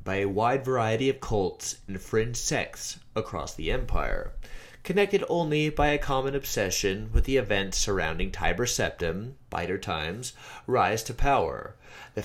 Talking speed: 145 wpm